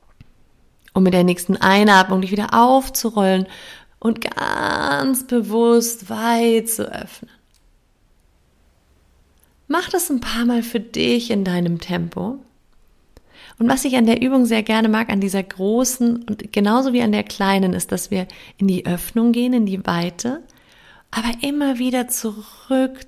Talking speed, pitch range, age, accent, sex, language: 145 wpm, 185-235 Hz, 30-49, German, female, German